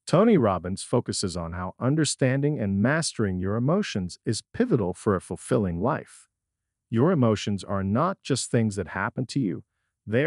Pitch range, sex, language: 95-140 Hz, male, English